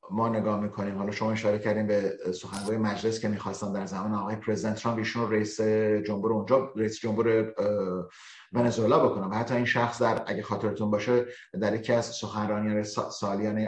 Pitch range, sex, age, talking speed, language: 105-130 Hz, male, 30-49, 165 wpm, Persian